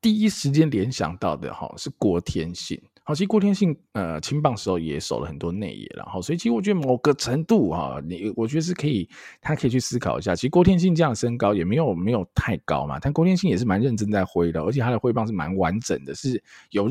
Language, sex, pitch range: Chinese, male, 90-145 Hz